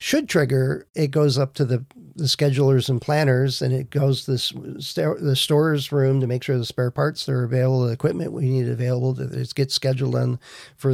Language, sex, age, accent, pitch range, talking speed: English, male, 50-69, American, 130-145 Hz, 215 wpm